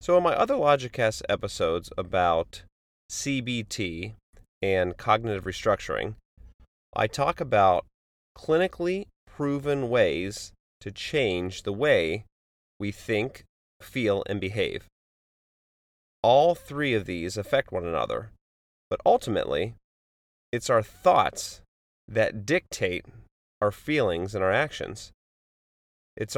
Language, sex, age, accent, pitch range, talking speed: English, male, 30-49, American, 70-110 Hz, 105 wpm